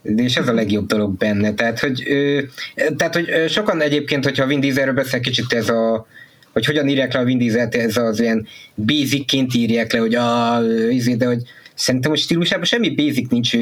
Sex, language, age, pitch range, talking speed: male, Hungarian, 20-39, 115-140 Hz, 200 wpm